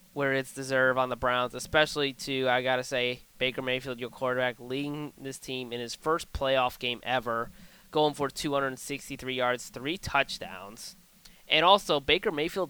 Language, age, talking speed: English, 20-39, 160 wpm